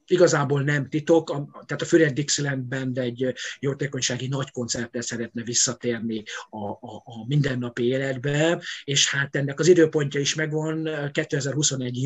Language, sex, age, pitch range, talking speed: Hungarian, male, 50-69, 130-160 Hz, 135 wpm